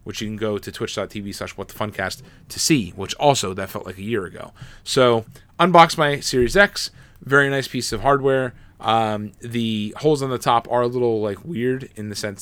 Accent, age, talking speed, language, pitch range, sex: American, 20-39, 210 wpm, English, 100-125 Hz, male